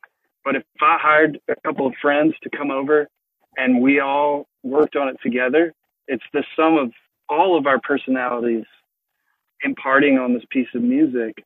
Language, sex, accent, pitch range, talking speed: English, male, American, 120-145 Hz, 170 wpm